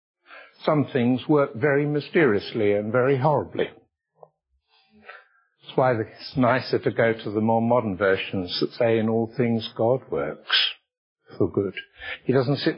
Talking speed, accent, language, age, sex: 145 wpm, British, English, 60-79, male